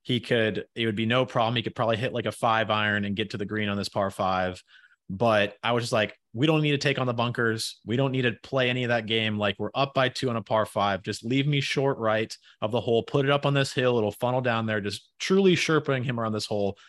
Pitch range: 110-135 Hz